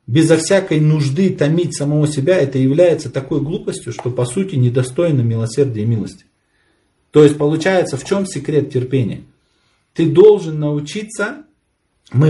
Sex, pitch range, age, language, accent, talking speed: male, 130-185 Hz, 40-59, Ukrainian, native, 135 wpm